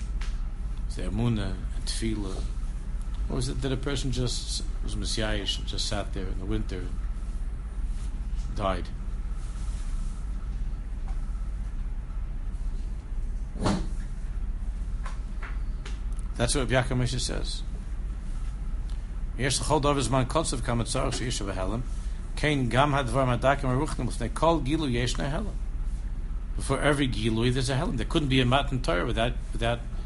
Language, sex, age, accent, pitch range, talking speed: English, male, 60-79, American, 75-125 Hz, 80 wpm